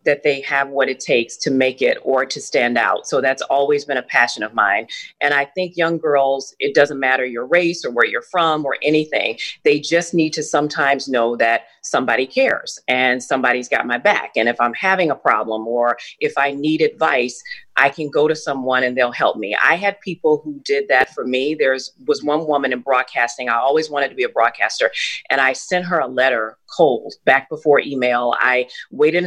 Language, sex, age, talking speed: English, female, 40-59, 215 wpm